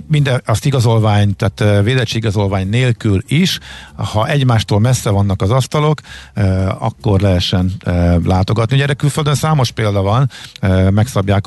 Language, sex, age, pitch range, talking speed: Hungarian, male, 50-69, 95-120 Hz, 125 wpm